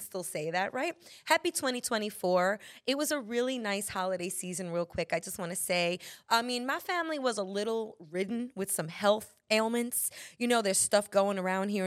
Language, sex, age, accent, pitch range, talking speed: English, female, 20-39, American, 190-275 Hz, 195 wpm